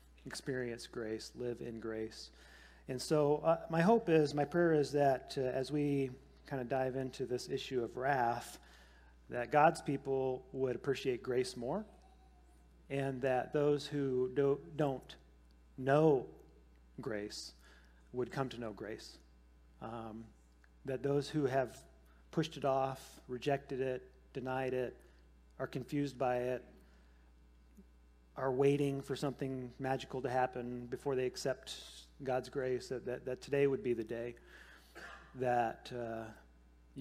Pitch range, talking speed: 100-140 Hz, 135 wpm